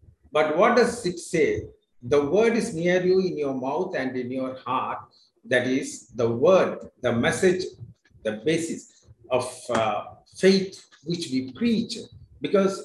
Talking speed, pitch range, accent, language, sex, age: 150 wpm, 130-195 Hz, Indian, English, male, 50-69